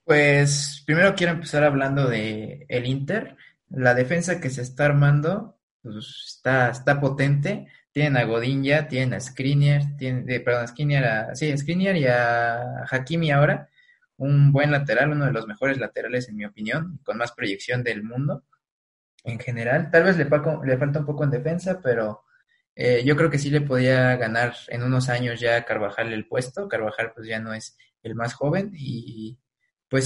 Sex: male